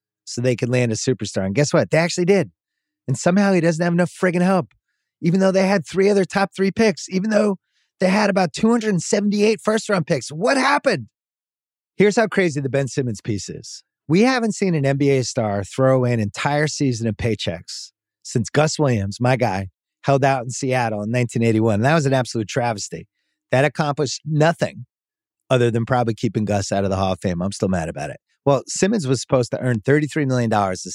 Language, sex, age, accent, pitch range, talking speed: English, male, 30-49, American, 120-190 Hz, 200 wpm